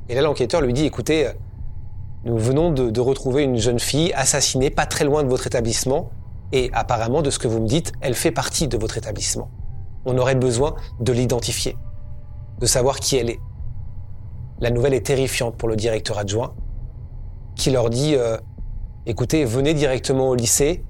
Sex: male